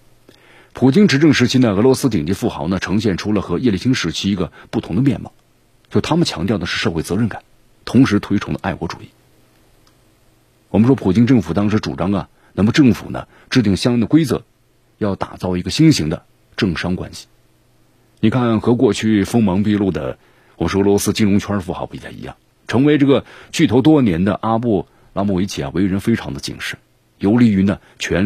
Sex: male